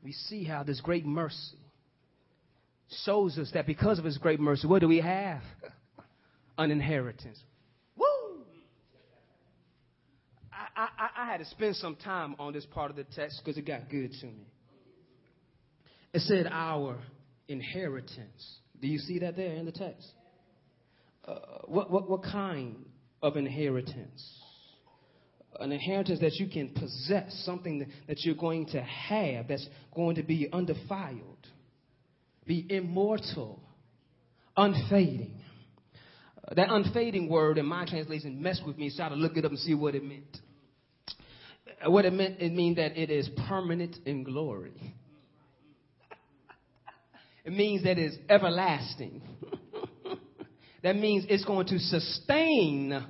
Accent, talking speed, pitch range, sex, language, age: American, 140 wpm, 140-185 Hz, male, English, 30-49